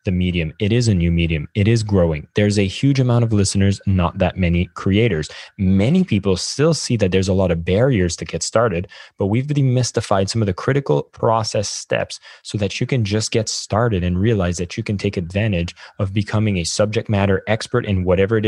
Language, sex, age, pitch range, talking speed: English, male, 20-39, 95-115 Hz, 210 wpm